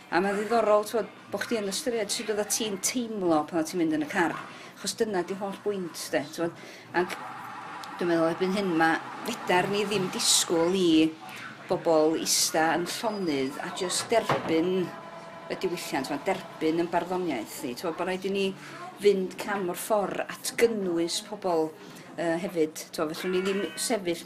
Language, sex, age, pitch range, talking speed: English, female, 40-59, 165-205 Hz, 165 wpm